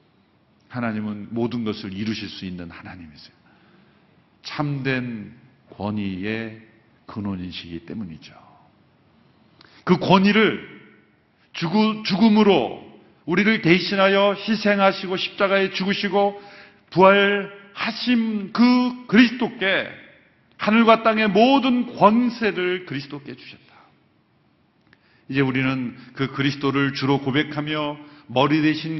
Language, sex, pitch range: Korean, male, 125-195 Hz